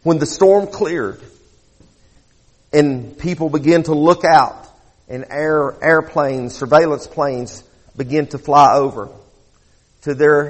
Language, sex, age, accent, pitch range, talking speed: English, male, 50-69, American, 125-160 Hz, 120 wpm